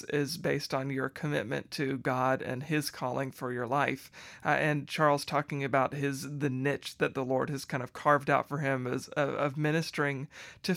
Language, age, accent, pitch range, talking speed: English, 40-59, American, 135-150 Hz, 200 wpm